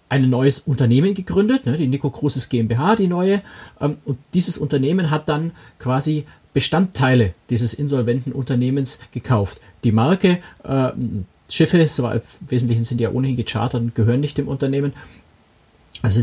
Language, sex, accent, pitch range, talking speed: German, male, German, 115-145 Hz, 135 wpm